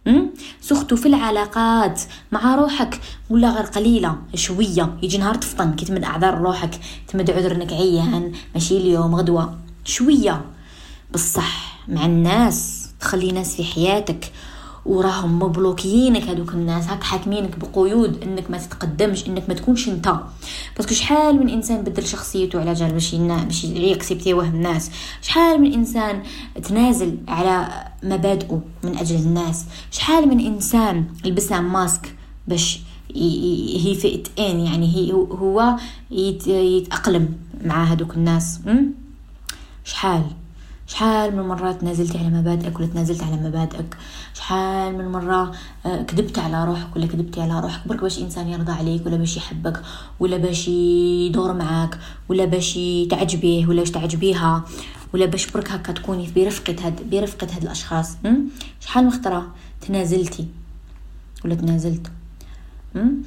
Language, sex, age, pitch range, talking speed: Arabic, female, 20-39, 170-205 Hz, 135 wpm